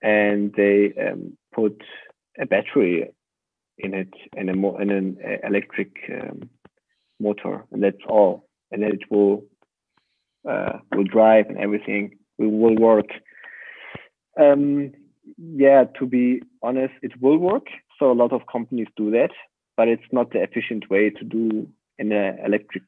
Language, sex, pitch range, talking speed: English, male, 100-120 Hz, 150 wpm